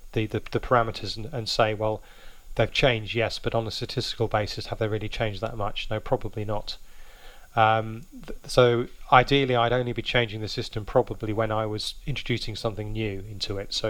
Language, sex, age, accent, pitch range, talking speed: English, male, 30-49, British, 105-120 Hz, 190 wpm